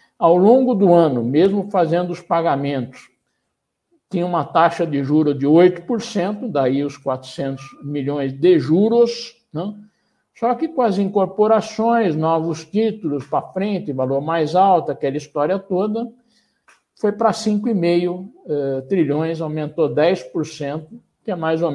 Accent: Brazilian